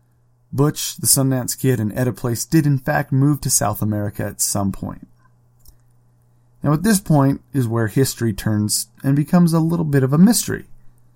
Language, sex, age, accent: English, male, 30-49, American